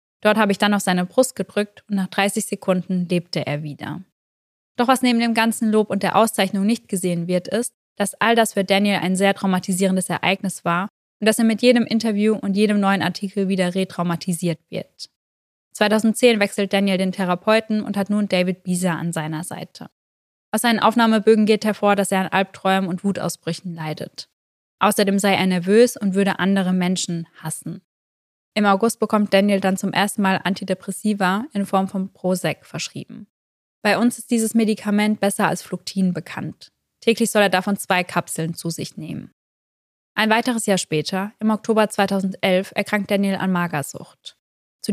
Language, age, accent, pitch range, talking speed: German, 20-39, German, 180-210 Hz, 170 wpm